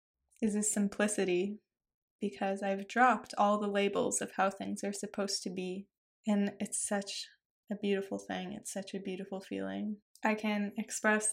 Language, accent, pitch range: English, American, 195-215 Hz